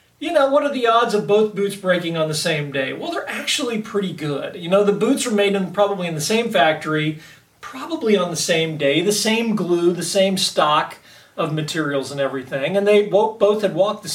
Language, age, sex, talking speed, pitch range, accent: English, 40-59, male, 220 wpm, 150-205 Hz, American